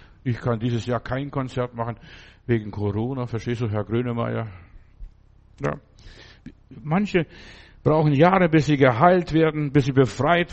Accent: German